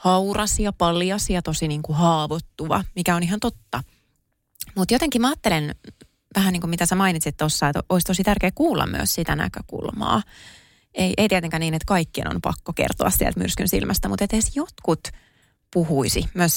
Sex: female